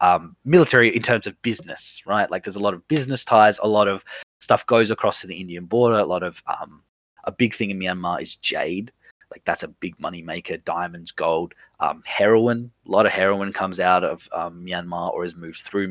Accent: Australian